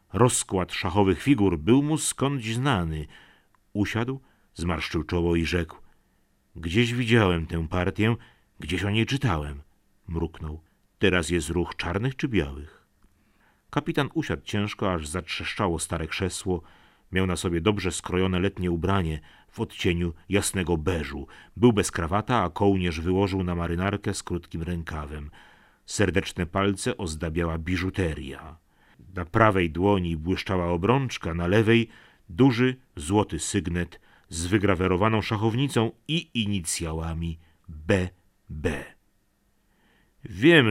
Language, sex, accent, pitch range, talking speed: Polish, male, native, 85-105 Hz, 120 wpm